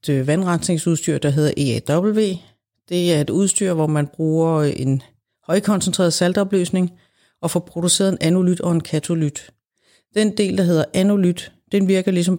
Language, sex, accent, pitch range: Danish, female, native, 160-190 Hz